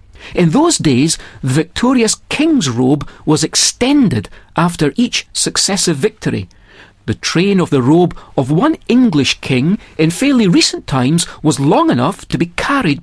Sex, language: male, English